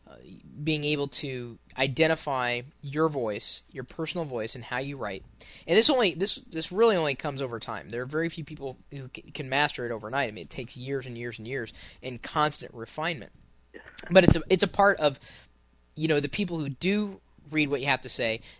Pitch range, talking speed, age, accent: 125-155 Hz, 205 wpm, 20-39, American